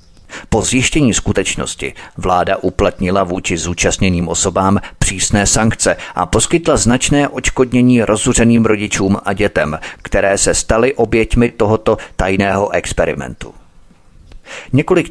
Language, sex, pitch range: Czech, male, 95-115 Hz